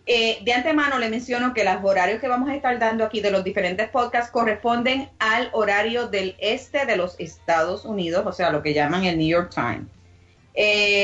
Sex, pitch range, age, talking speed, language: female, 185-235 Hz, 30-49, 200 wpm, English